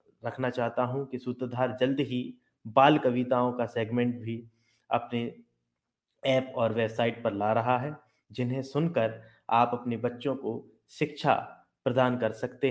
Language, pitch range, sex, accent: Hindi, 115-165 Hz, male, native